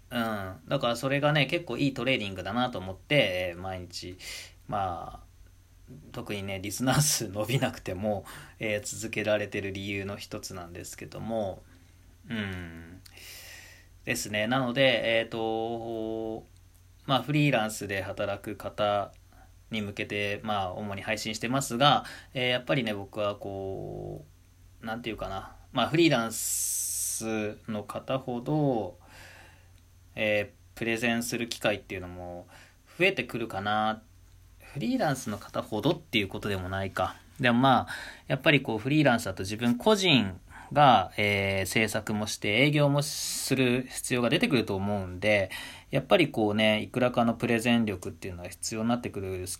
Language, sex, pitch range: Japanese, male, 90-115 Hz